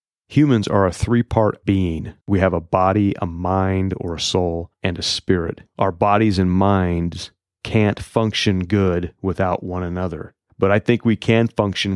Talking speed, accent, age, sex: 165 wpm, American, 30-49, male